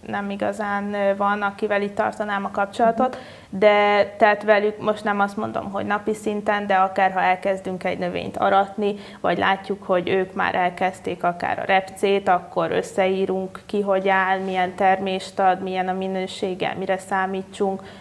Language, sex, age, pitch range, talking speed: Hungarian, female, 20-39, 185-200 Hz, 155 wpm